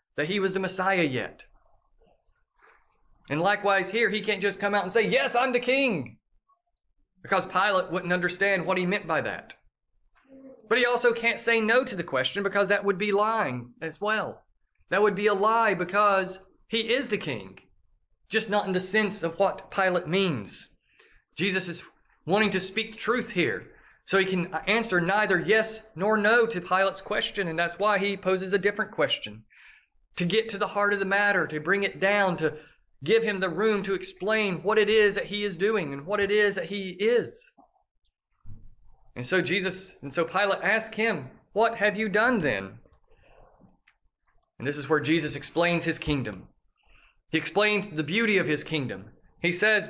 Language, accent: English, American